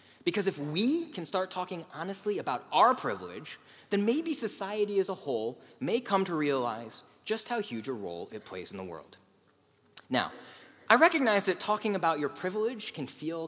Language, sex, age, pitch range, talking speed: English, male, 30-49, 145-225 Hz, 180 wpm